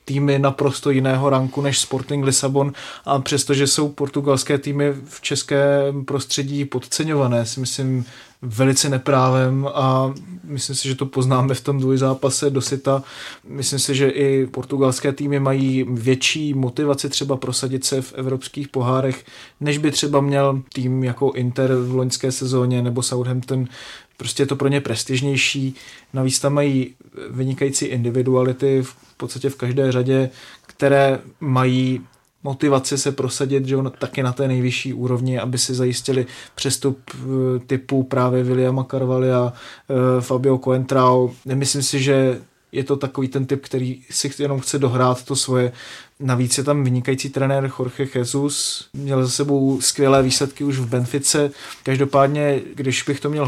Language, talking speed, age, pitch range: Czech, 150 wpm, 20-39, 130-140 Hz